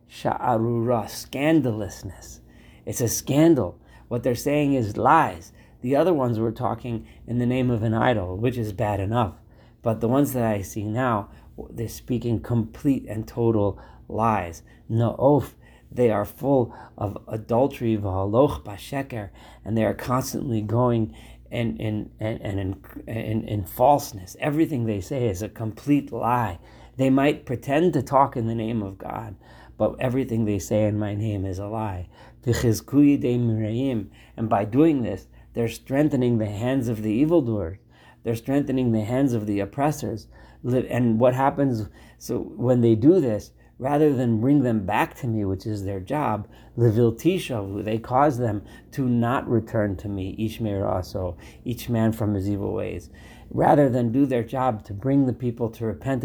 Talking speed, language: 160 wpm, English